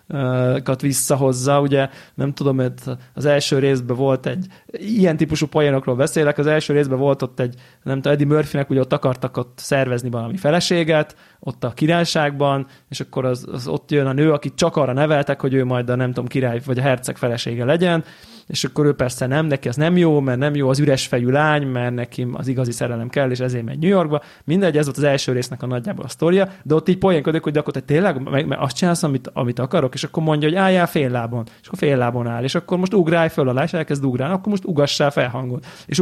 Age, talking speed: 20-39, 230 wpm